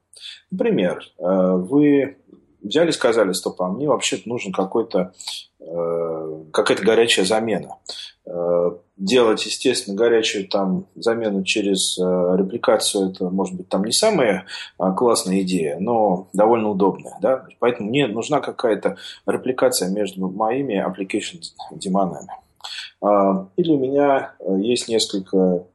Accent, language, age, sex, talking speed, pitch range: native, Russian, 30-49, male, 110 wpm, 95-130 Hz